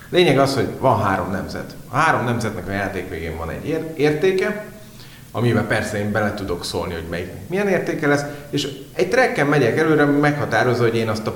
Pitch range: 95-140 Hz